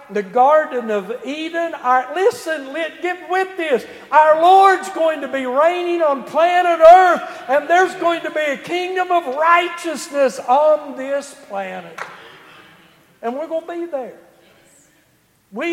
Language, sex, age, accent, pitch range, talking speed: English, male, 60-79, American, 205-305 Hz, 135 wpm